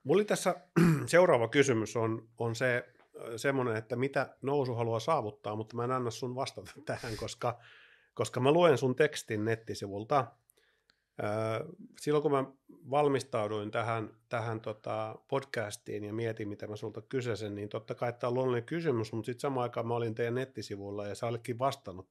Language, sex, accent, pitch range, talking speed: Finnish, male, native, 105-130 Hz, 155 wpm